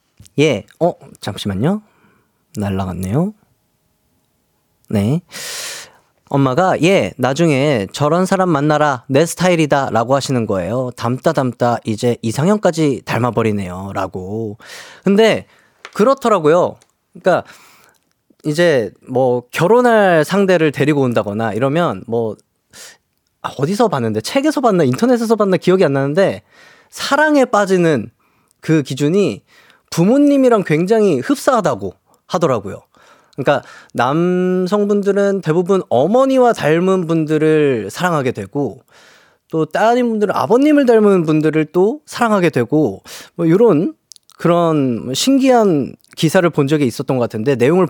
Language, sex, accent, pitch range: Korean, male, native, 125-195 Hz